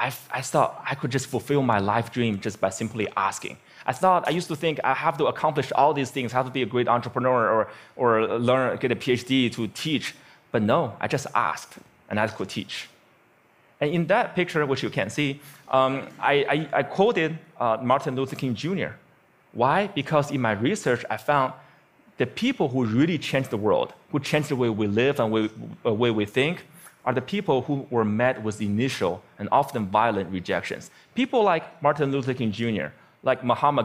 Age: 20-39